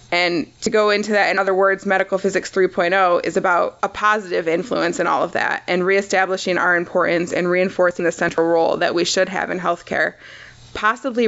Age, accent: 20-39, American